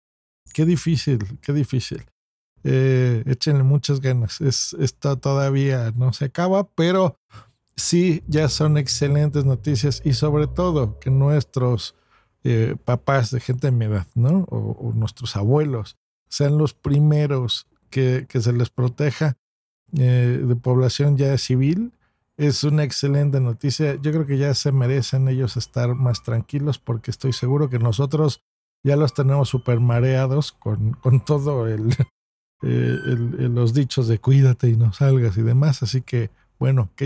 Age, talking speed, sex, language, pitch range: 50-69, 150 wpm, male, Spanish, 125-155 Hz